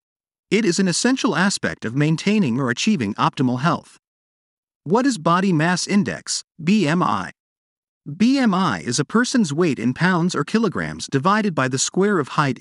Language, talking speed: English, 150 wpm